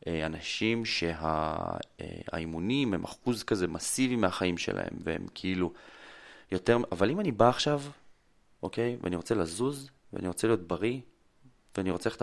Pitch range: 85-105 Hz